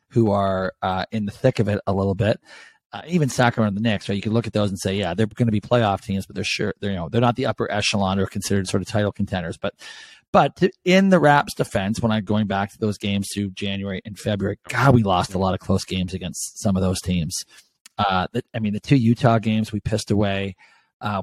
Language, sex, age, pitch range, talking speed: English, male, 40-59, 100-120 Hz, 255 wpm